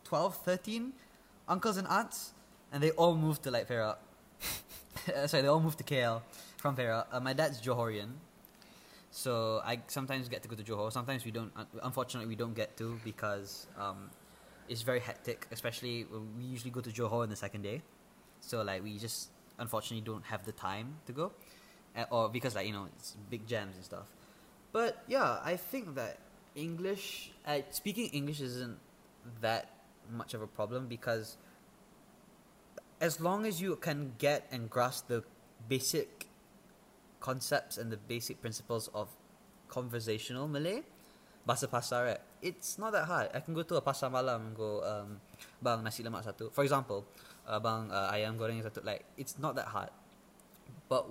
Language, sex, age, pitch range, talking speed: English, male, 10-29, 110-145 Hz, 170 wpm